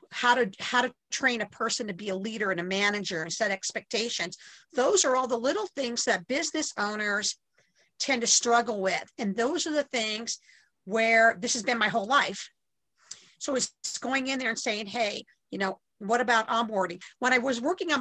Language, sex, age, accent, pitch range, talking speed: English, female, 50-69, American, 210-260 Hz, 200 wpm